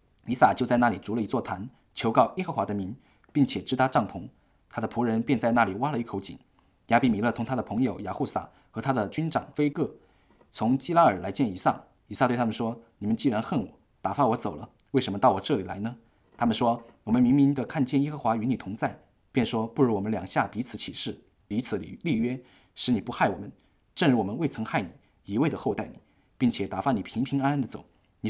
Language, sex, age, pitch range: English, male, 20-39, 105-135 Hz